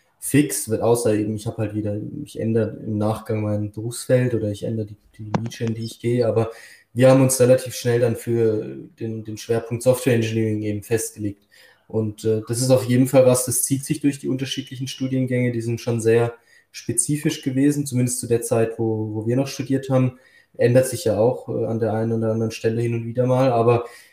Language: German